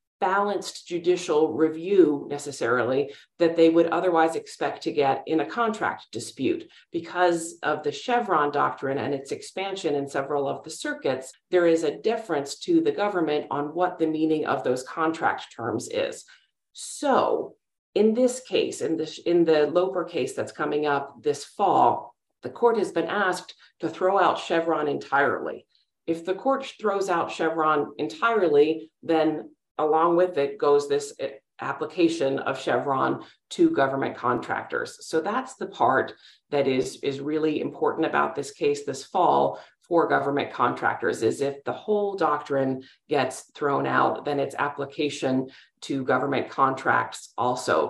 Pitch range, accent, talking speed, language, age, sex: 150-230 Hz, American, 150 wpm, English, 40-59, female